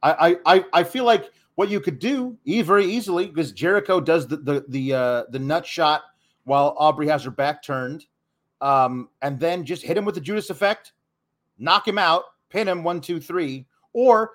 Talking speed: 190 wpm